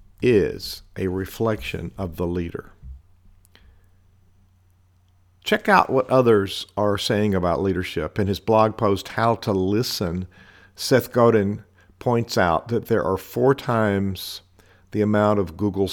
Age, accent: 50-69, American